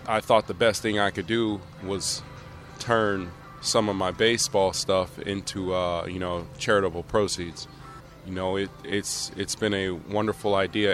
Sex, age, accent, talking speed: male, 20-39, American, 165 wpm